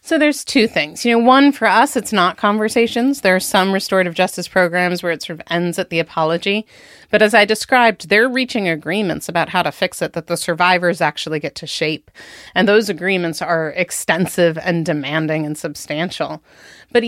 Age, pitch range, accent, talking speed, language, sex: 30-49, 170-210 Hz, American, 195 wpm, English, female